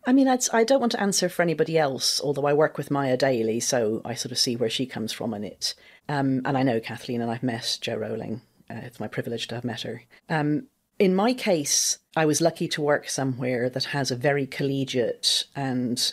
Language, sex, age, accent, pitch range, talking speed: English, female, 40-59, British, 125-160 Hz, 230 wpm